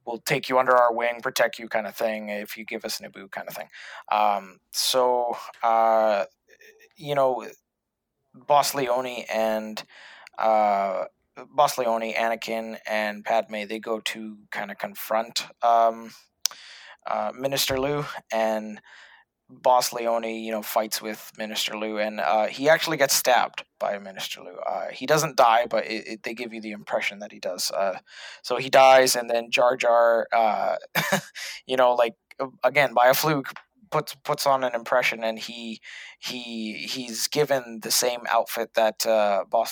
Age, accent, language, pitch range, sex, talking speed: 20-39, American, English, 110-130 Hz, male, 165 wpm